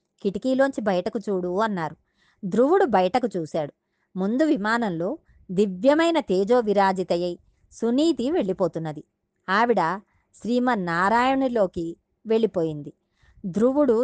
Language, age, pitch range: Telugu, 20-39, 175-235 Hz